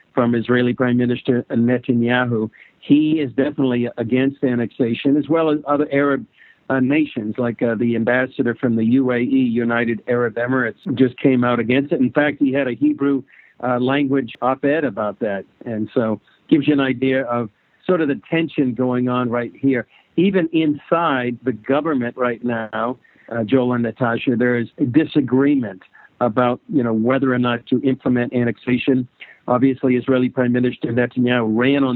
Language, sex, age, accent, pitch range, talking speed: English, male, 60-79, American, 120-140 Hz, 165 wpm